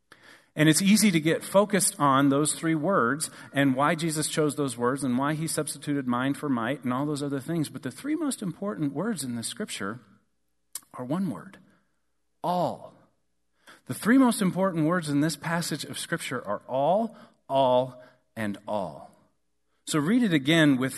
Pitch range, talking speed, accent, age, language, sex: 110-160 Hz, 175 wpm, American, 40-59, English, male